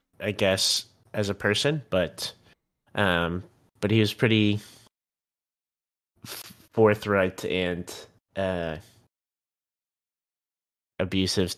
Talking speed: 85 wpm